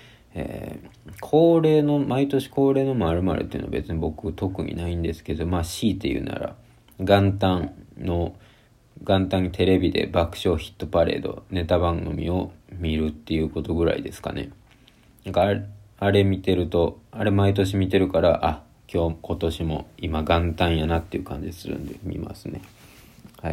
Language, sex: Japanese, male